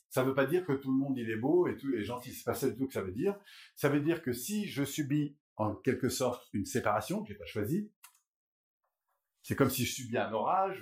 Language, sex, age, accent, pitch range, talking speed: French, male, 50-69, French, 110-145 Hz, 265 wpm